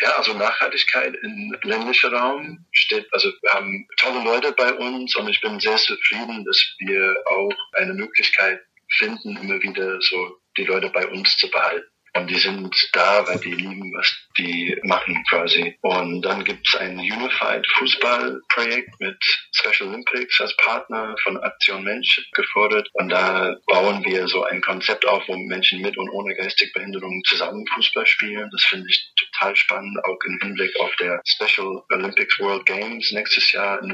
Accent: German